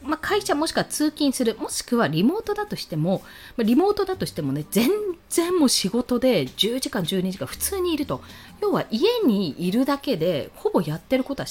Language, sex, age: Japanese, female, 20-39